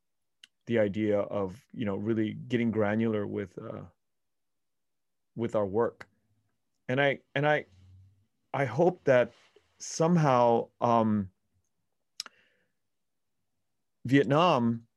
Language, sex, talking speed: English, male, 90 wpm